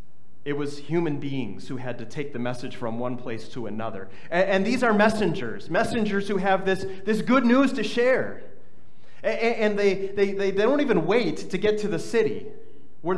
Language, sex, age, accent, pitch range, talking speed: English, male, 30-49, American, 190-235 Hz, 200 wpm